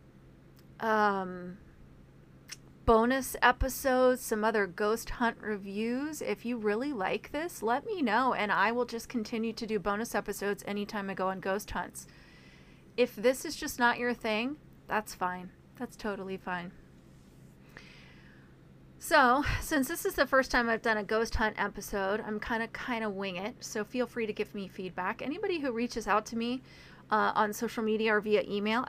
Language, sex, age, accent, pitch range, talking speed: English, female, 30-49, American, 185-235 Hz, 170 wpm